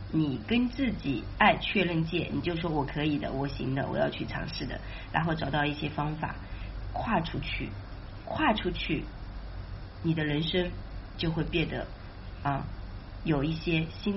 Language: Chinese